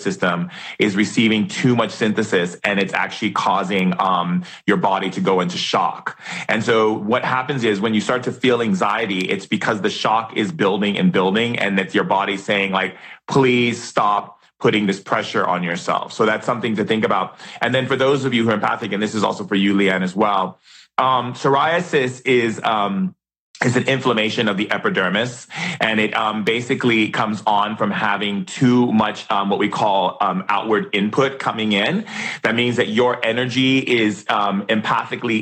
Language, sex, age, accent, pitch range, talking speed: English, male, 30-49, American, 105-125 Hz, 185 wpm